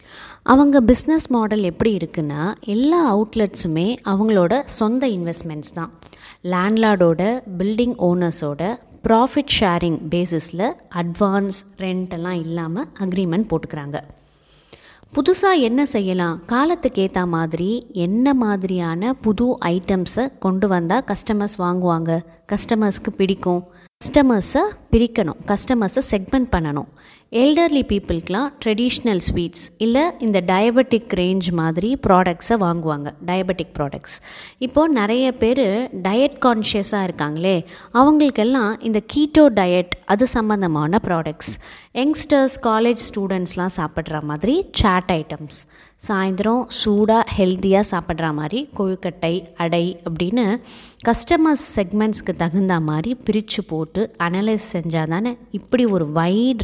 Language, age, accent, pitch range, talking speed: Tamil, 20-39, native, 175-235 Hz, 100 wpm